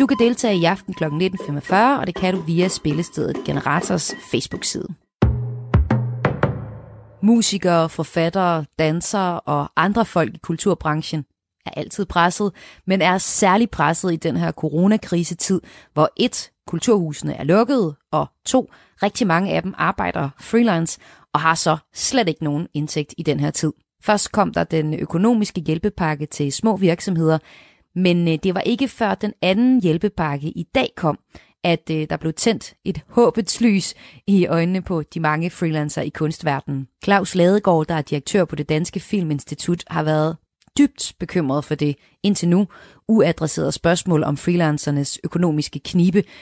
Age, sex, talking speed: 30-49, female, 150 wpm